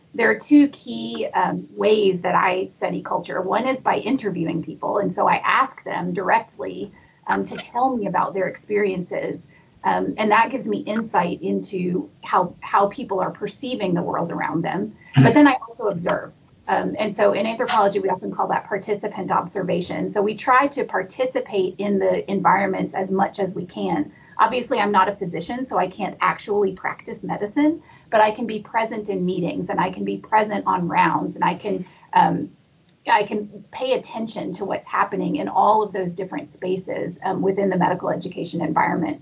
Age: 30-49